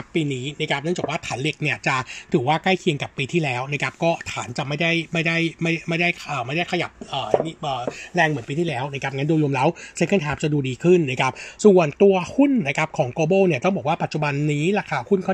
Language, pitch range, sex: Thai, 145-180 Hz, male